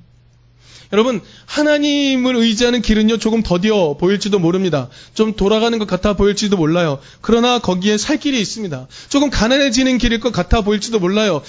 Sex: male